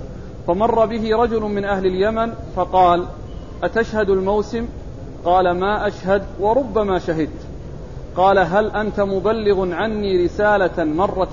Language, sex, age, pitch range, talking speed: Arabic, male, 40-59, 180-215 Hz, 110 wpm